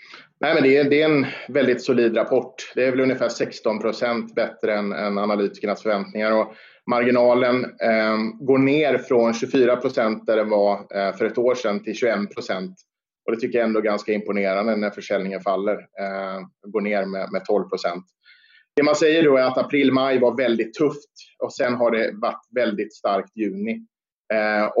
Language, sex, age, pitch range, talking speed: Swedish, male, 30-49, 105-130 Hz, 165 wpm